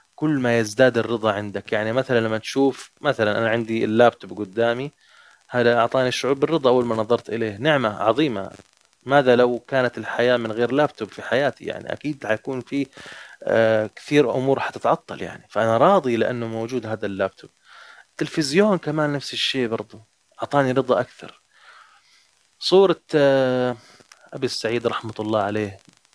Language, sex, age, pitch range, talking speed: Arabic, male, 20-39, 110-135 Hz, 140 wpm